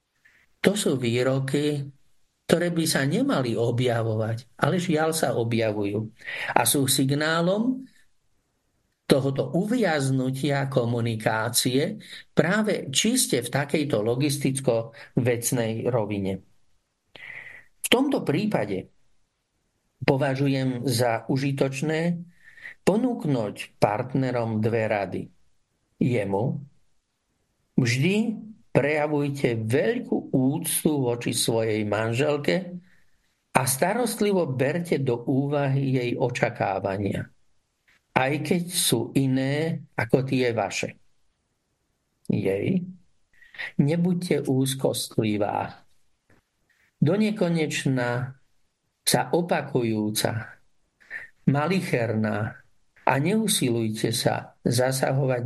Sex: male